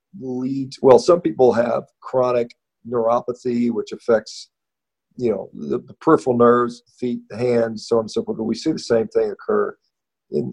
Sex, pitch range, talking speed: male, 110-155 Hz, 180 wpm